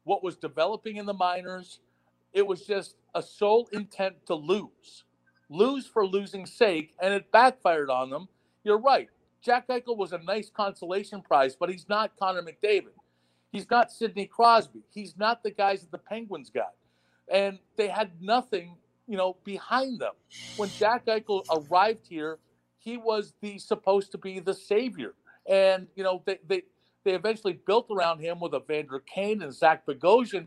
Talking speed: 170 wpm